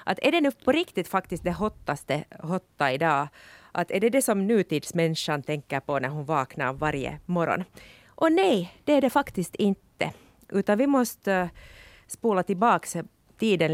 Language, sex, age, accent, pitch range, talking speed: Swedish, female, 30-49, Finnish, 160-225 Hz, 160 wpm